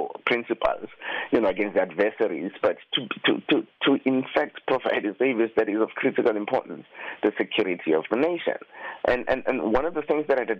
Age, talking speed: 30-49, 195 wpm